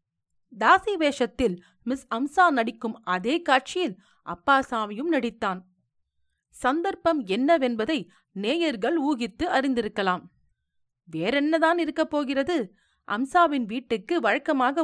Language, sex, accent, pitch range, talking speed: Tamil, female, native, 210-315 Hz, 75 wpm